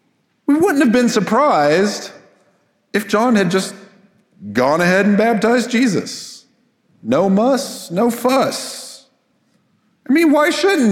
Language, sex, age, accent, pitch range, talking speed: English, male, 40-59, American, 155-220 Hz, 120 wpm